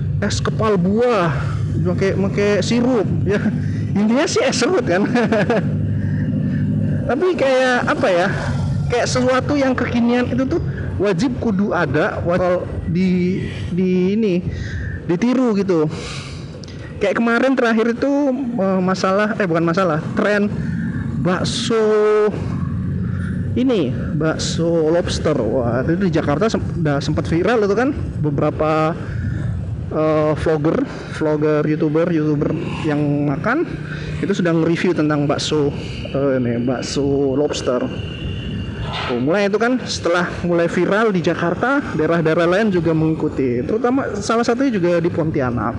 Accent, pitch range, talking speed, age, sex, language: native, 145-205 Hz, 115 wpm, 20-39, male, Indonesian